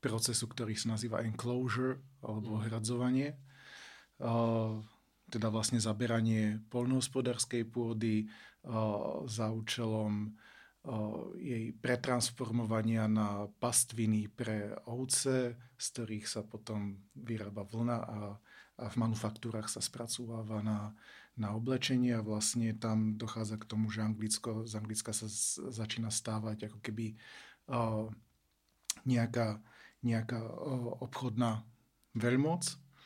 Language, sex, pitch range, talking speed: Slovak, male, 110-120 Hz, 100 wpm